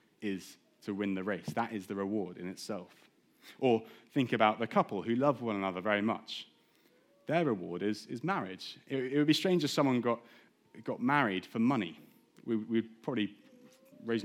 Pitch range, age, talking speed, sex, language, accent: 105-130 Hz, 30-49, 180 wpm, male, English, British